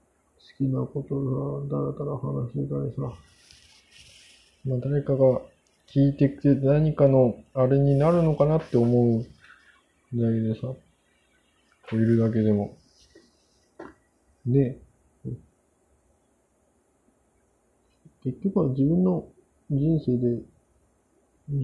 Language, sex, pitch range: Japanese, male, 120-155 Hz